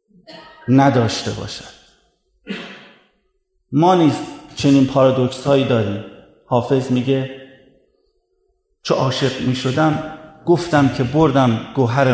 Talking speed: 80 wpm